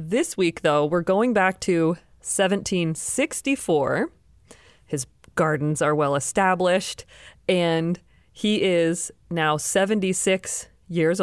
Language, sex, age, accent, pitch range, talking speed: English, female, 30-49, American, 160-195 Hz, 95 wpm